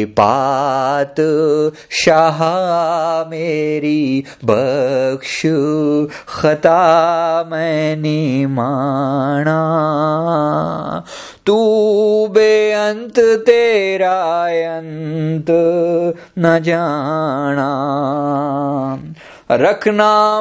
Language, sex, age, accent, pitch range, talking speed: Hindi, male, 30-49, native, 150-210 Hz, 40 wpm